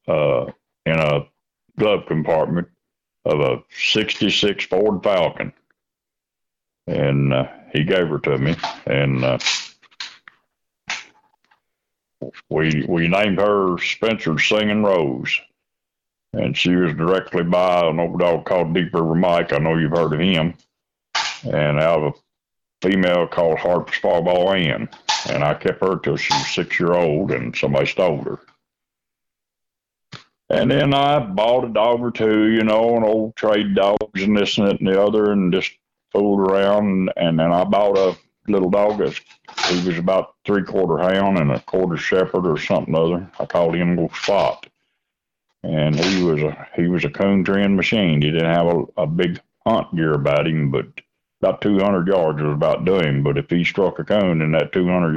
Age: 60-79